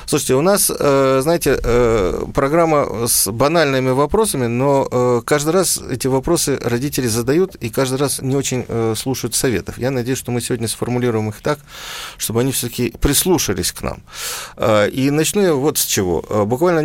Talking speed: 155 wpm